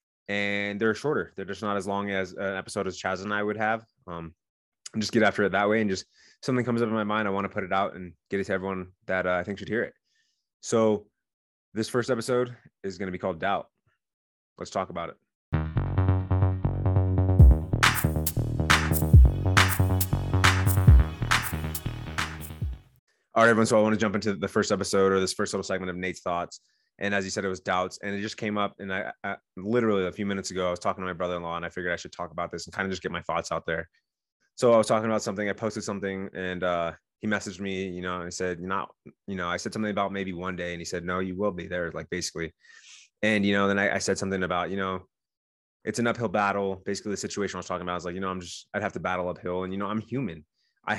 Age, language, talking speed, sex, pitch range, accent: 20-39, English, 245 wpm, male, 90-105 Hz, American